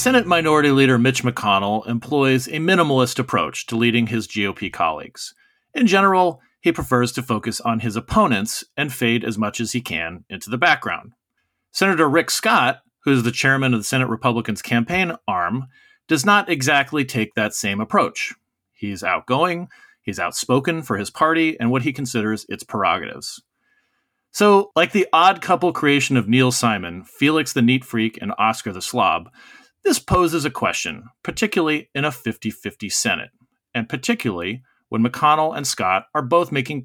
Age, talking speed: 40-59, 165 wpm